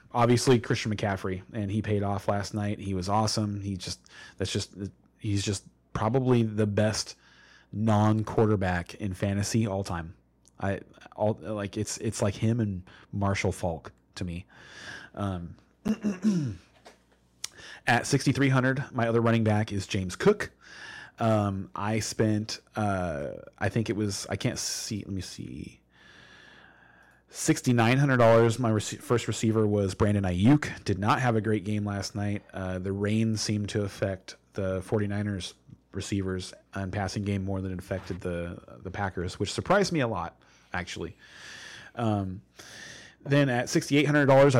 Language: English